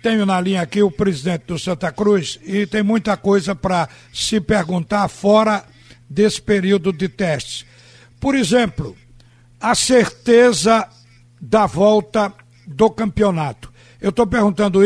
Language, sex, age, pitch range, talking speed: Portuguese, male, 60-79, 170-215 Hz, 130 wpm